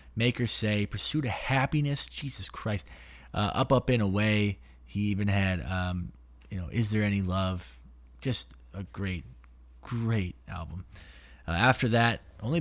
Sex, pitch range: male, 90-115 Hz